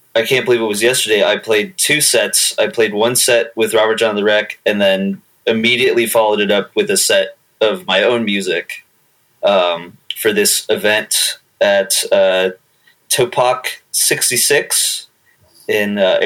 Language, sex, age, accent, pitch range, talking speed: English, male, 20-39, American, 100-120 Hz, 155 wpm